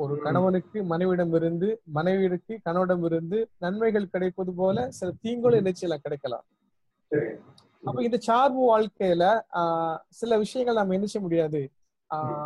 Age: 30-49